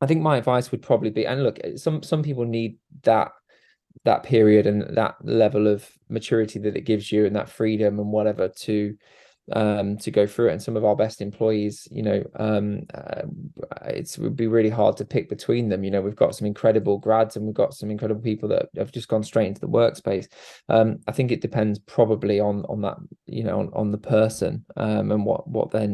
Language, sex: English, male